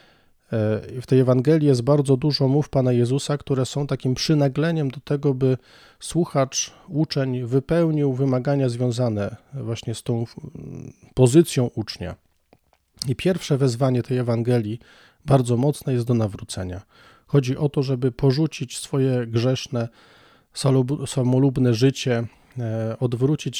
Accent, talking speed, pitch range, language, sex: native, 115 wpm, 120-145 Hz, Polish, male